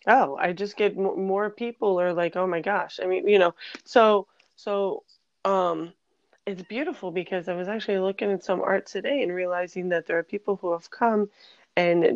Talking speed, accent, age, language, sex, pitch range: 195 wpm, American, 20-39, English, female, 165-195 Hz